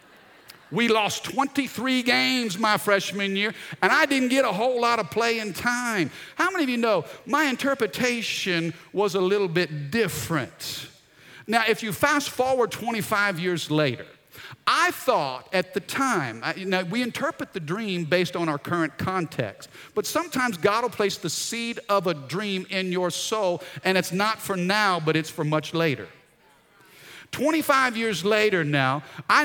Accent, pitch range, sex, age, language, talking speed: American, 180-245 Hz, male, 50-69, English, 165 wpm